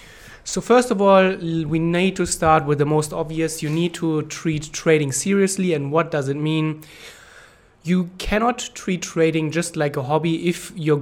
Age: 20-39